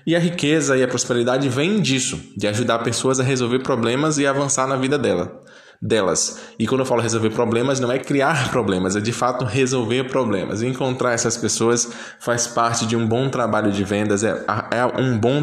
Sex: male